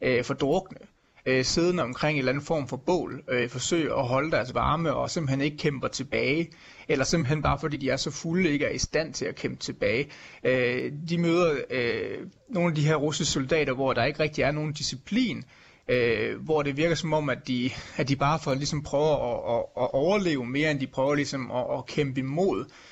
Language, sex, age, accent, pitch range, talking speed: Danish, male, 30-49, native, 130-160 Hz, 185 wpm